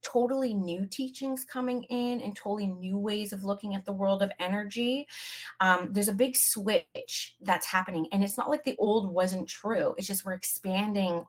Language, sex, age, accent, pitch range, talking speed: English, female, 30-49, American, 175-220 Hz, 185 wpm